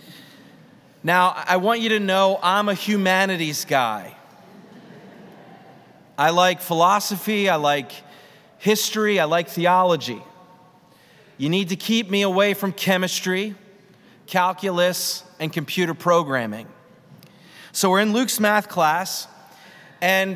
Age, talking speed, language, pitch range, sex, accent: 30-49, 110 wpm, English, 170-200 Hz, male, American